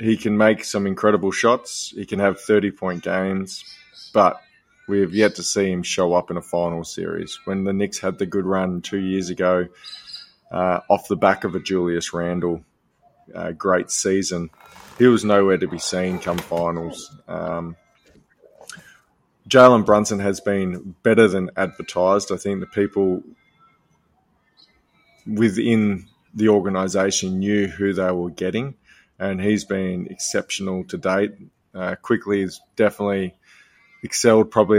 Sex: male